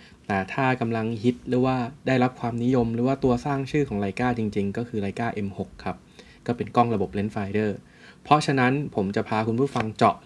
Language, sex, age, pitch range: Thai, male, 20-39, 110-150 Hz